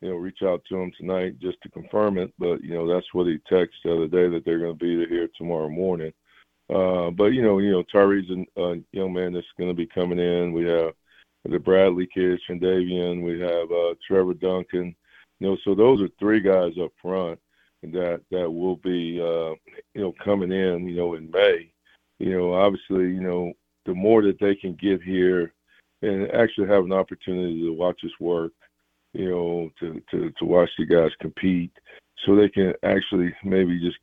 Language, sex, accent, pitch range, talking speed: English, male, American, 85-95 Hz, 205 wpm